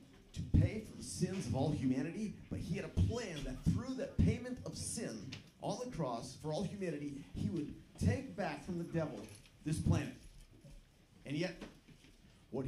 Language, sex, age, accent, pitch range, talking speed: English, male, 40-59, American, 125-165 Hz, 175 wpm